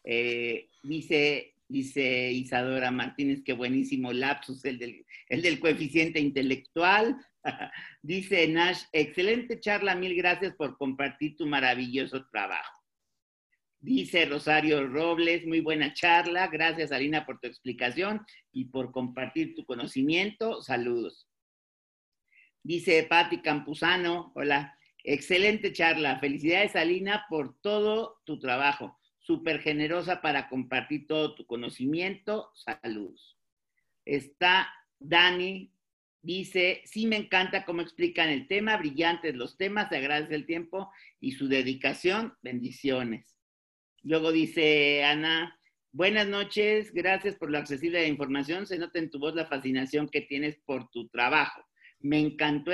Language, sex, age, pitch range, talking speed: Spanish, male, 50-69, 140-180 Hz, 120 wpm